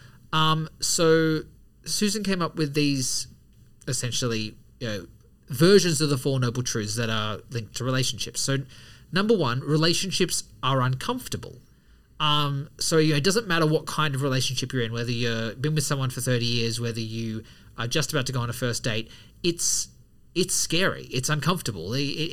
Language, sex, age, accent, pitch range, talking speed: English, male, 30-49, Australian, 120-145 Hz, 175 wpm